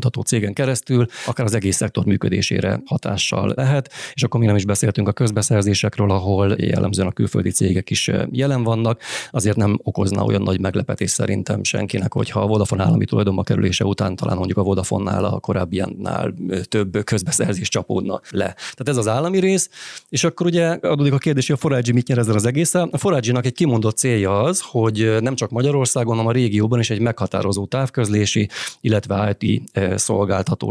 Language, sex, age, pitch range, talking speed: Hungarian, male, 30-49, 100-125 Hz, 180 wpm